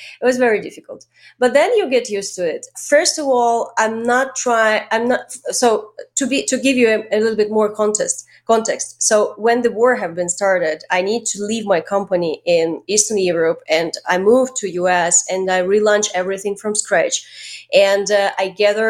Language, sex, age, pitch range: English, female, 30-49, 195-245 Hz